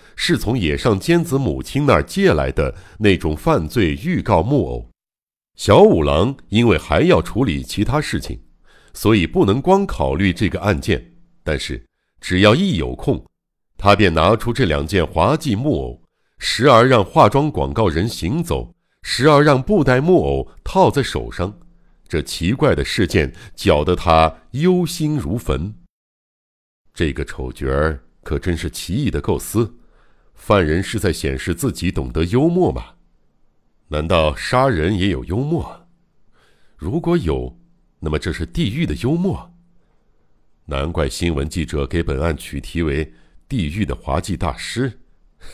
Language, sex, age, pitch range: Chinese, male, 60-79, 75-120 Hz